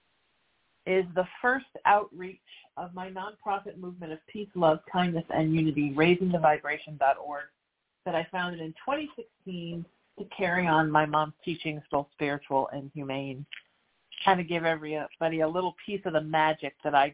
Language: English